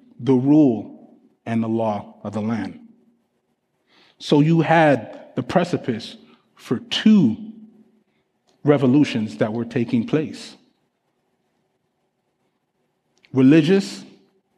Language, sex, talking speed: English, male, 85 wpm